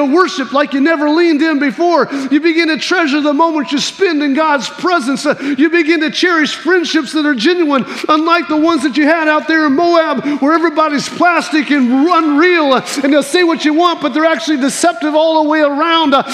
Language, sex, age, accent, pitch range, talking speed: English, male, 40-59, American, 245-330 Hz, 210 wpm